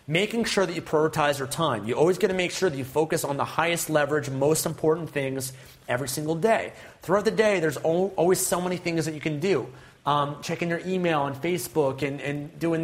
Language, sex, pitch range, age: English, male, 135-175 Hz, 30-49